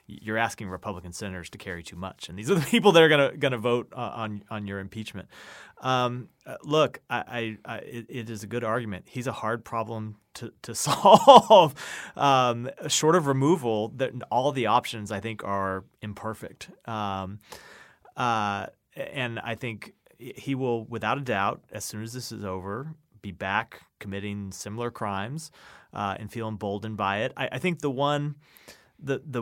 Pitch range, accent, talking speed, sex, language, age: 100-120 Hz, American, 175 wpm, male, English, 30-49